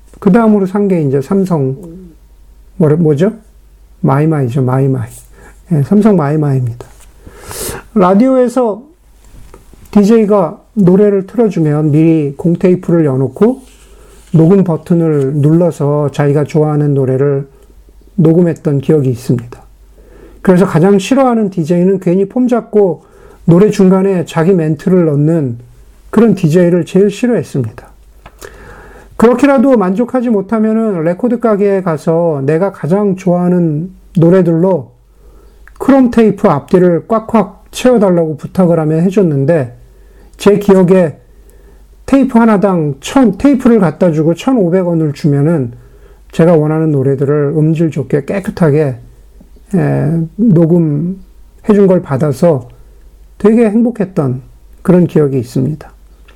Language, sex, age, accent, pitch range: Korean, male, 50-69, native, 145-200 Hz